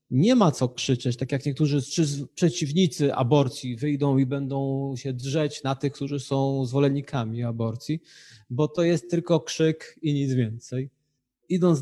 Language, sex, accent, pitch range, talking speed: Polish, male, native, 130-160 Hz, 145 wpm